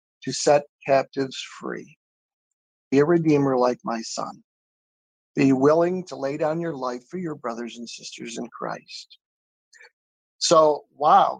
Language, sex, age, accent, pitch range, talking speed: English, male, 50-69, American, 135-165 Hz, 135 wpm